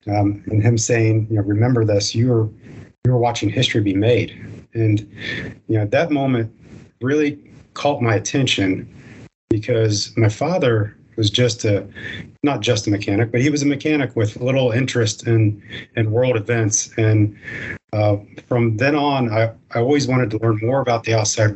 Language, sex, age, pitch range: English, male, 40-59, 105-125 Hz